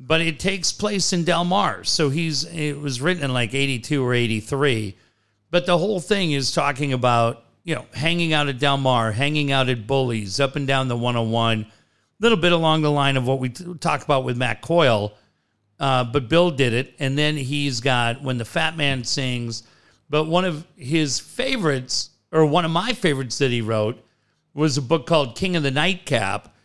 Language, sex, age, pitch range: English, male, 50-69, 120-160 Hz